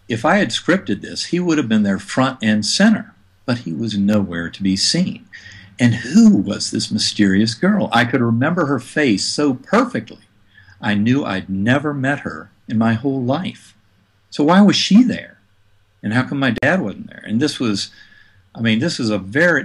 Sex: male